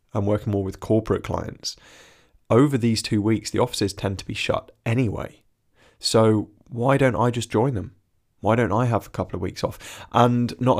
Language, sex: English, male